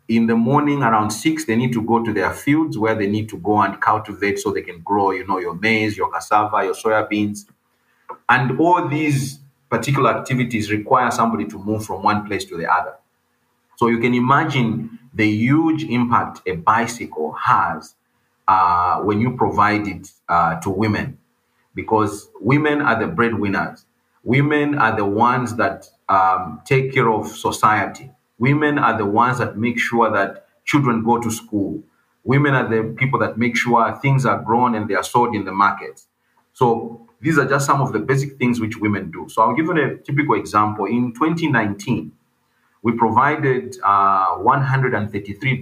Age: 40-59